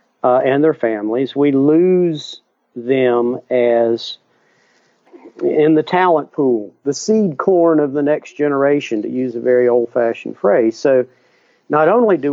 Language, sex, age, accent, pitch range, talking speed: English, male, 50-69, American, 120-145 Hz, 140 wpm